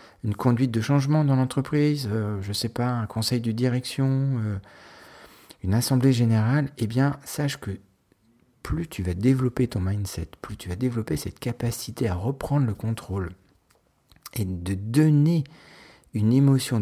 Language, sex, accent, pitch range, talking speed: French, male, French, 95-125 Hz, 155 wpm